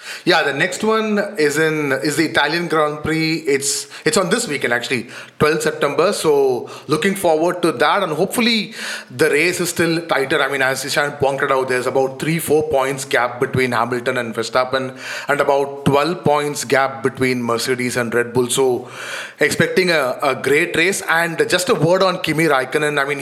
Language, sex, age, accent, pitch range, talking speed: English, male, 30-49, Indian, 130-165 Hz, 185 wpm